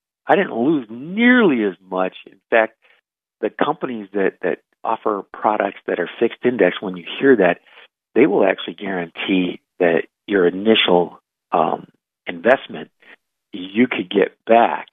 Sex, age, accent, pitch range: male, 50-69, American, 95-155 Hz